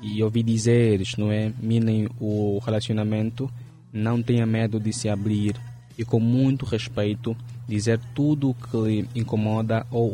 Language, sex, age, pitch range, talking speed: Portuguese, male, 20-39, 110-120 Hz, 150 wpm